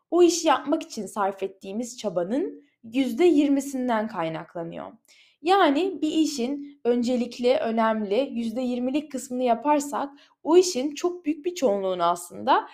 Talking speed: 125 wpm